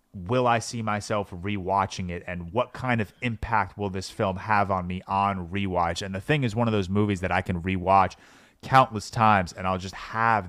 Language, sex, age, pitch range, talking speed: English, male, 30-49, 95-110 Hz, 210 wpm